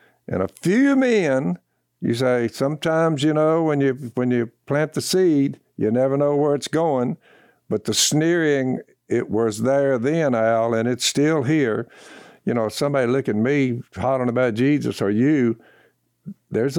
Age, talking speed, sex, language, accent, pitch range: 60-79, 165 wpm, male, English, American, 115-145 Hz